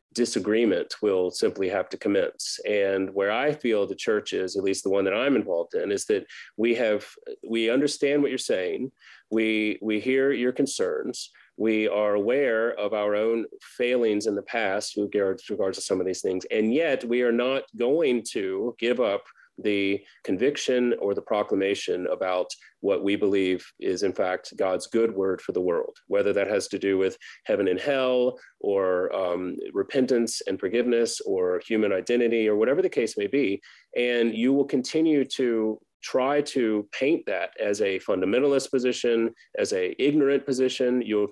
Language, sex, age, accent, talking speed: English, male, 30-49, American, 170 wpm